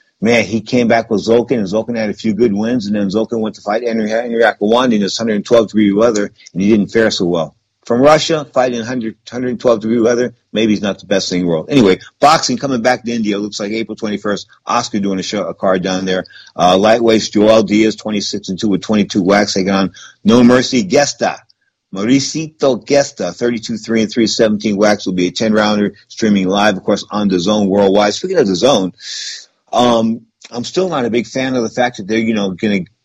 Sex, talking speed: male, 225 wpm